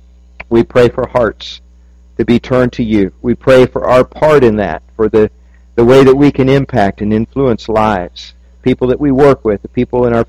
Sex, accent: male, American